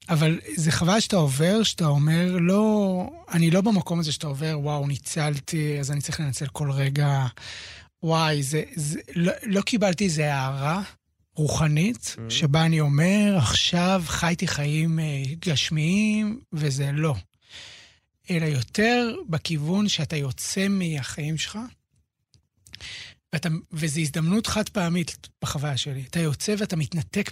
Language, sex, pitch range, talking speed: Hebrew, male, 145-185 Hz, 125 wpm